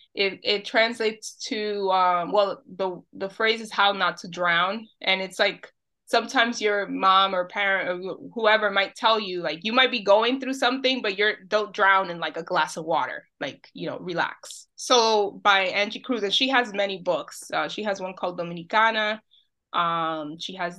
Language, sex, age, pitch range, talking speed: English, female, 20-39, 190-245 Hz, 190 wpm